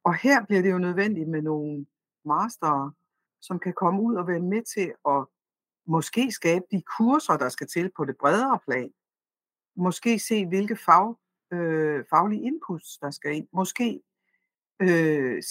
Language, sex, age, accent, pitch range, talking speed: Danish, female, 60-79, native, 160-210 Hz, 160 wpm